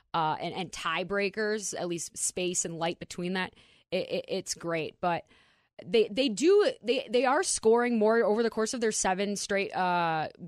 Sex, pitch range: female, 170-205 Hz